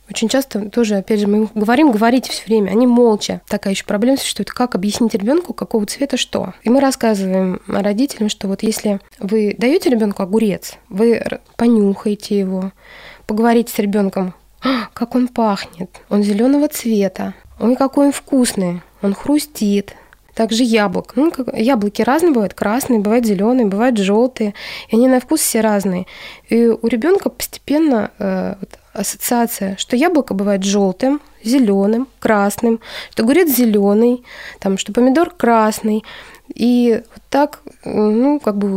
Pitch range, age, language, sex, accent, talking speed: 205-255 Hz, 20-39, Russian, female, native, 150 wpm